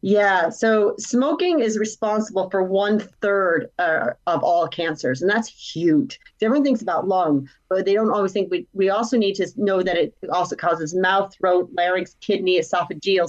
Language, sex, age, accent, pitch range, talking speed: English, female, 40-59, American, 175-215 Hz, 170 wpm